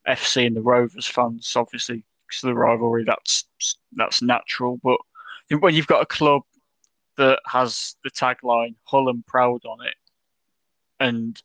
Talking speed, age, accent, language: 150 wpm, 20-39, British, English